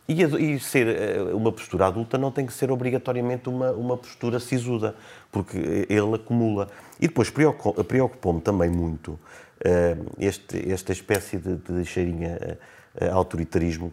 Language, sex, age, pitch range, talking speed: Portuguese, male, 30-49, 95-135 Hz, 125 wpm